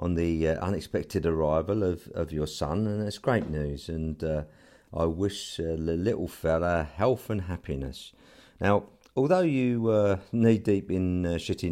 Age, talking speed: 50-69, 170 wpm